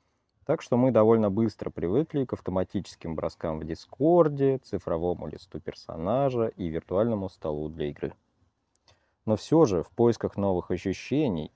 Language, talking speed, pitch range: Russian, 135 wpm, 90-115 Hz